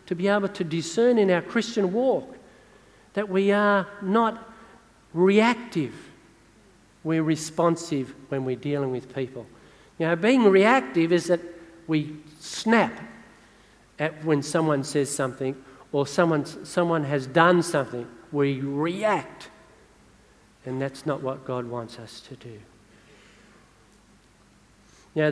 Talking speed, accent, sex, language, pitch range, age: 120 wpm, Australian, male, English, 140-190 Hz, 50-69